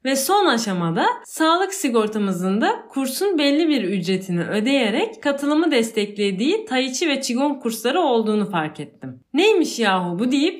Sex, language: female, Turkish